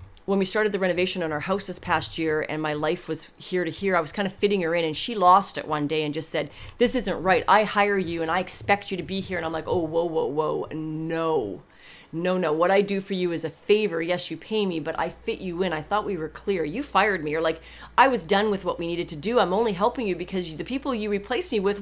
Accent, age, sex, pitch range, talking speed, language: American, 30-49, female, 160-205 Hz, 285 wpm, English